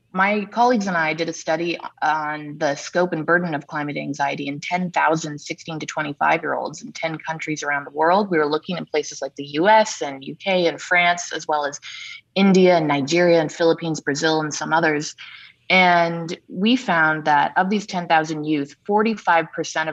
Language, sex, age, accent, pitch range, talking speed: English, female, 20-39, American, 150-170 Hz, 185 wpm